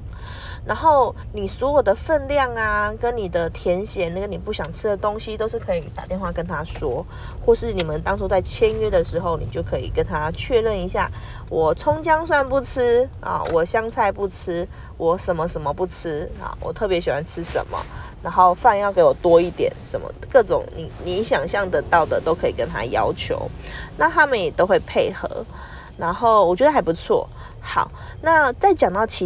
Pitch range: 180-295 Hz